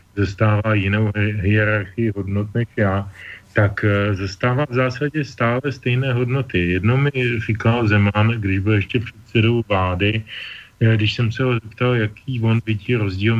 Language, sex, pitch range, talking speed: Slovak, male, 105-125 Hz, 140 wpm